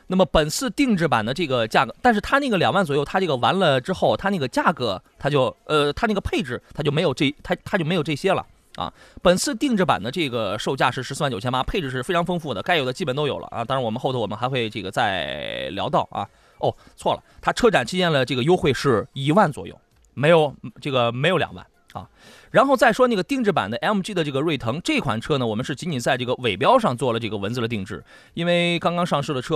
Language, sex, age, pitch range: Chinese, male, 20-39, 125-180 Hz